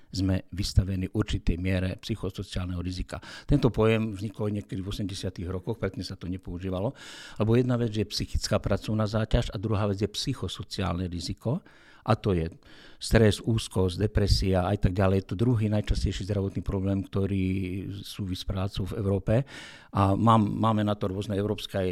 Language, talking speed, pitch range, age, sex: Slovak, 155 wpm, 95-110 Hz, 60-79, male